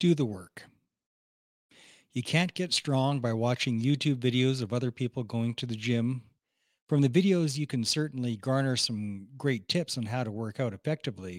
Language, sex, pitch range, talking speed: English, male, 115-155 Hz, 180 wpm